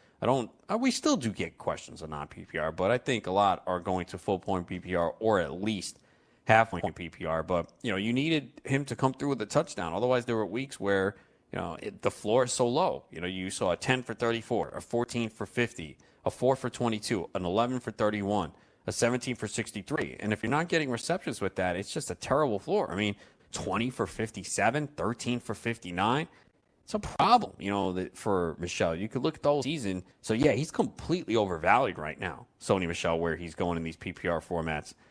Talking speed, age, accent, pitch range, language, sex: 220 wpm, 30-49, American, 95-130 Hz, English, male